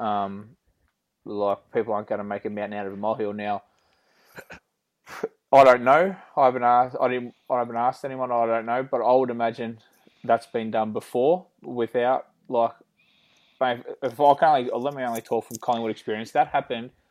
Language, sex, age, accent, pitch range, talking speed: English, male, 20-39, Australian, 110-125 Hz, 180 wpm